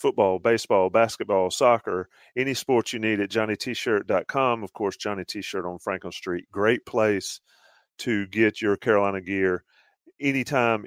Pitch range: 95-115 Hz